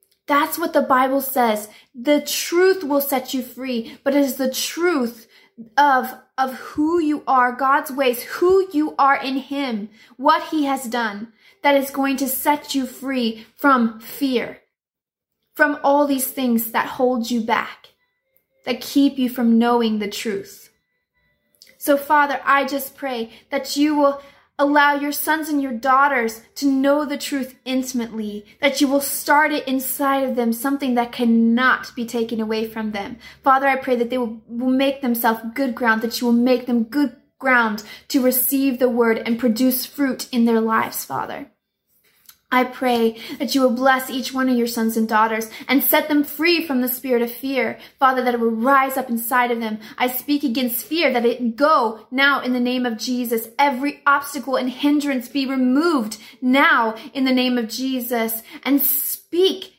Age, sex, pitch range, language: 20-39, female, 240-285 Hz, English